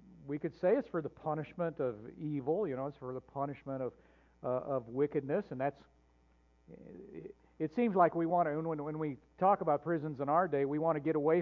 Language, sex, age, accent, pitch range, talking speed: English, male, 50-69, American, 140-195 Hz, 220 wpm